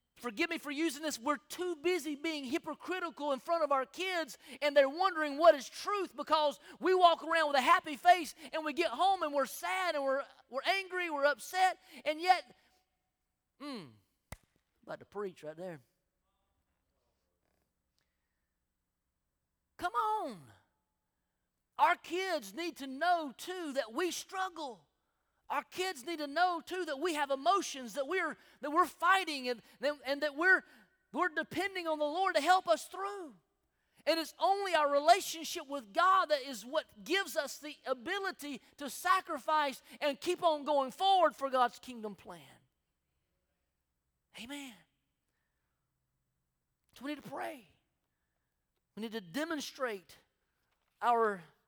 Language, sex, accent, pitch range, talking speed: English, male, American, 240-345 Hz, 145 wpm